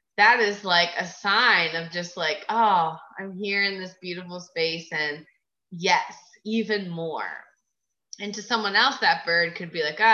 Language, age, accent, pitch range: English, 20-39, American, 180-280 Hz